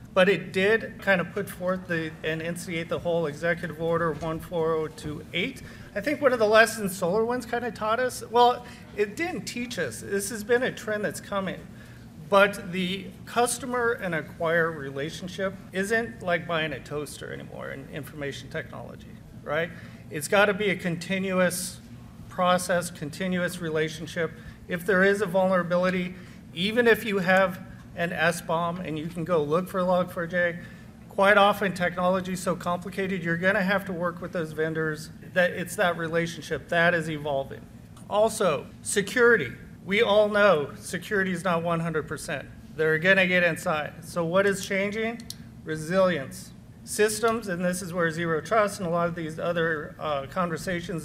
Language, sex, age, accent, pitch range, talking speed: English, male, 40-59, American, 165-200 Hz, 160 wpm